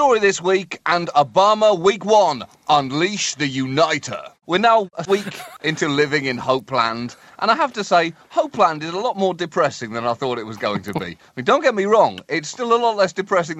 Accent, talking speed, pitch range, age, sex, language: British, 215 wpm, 120-185 Hz, 30-49, male, English